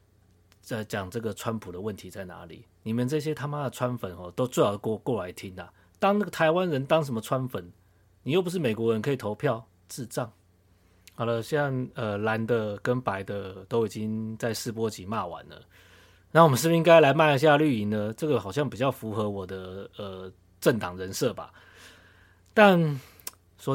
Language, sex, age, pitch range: Chinese, male, 30-49, 100-135 Hz